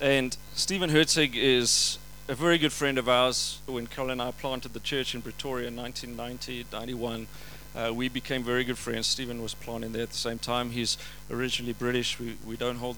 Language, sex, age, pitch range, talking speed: English, male, 40-59, 120-140 Hz, 195 wpm